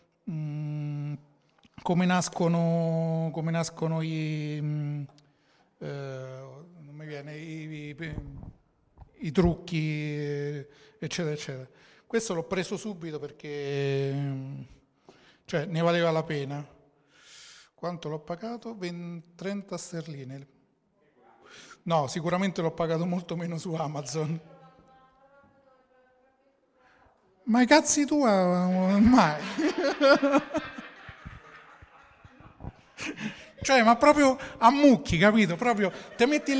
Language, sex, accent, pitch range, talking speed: Italian, male, native, 160-255 Hz, 85 wpm